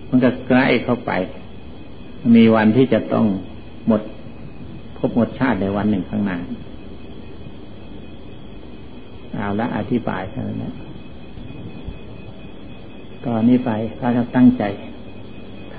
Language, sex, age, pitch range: Thai, male, 60-79, 110-135 Hz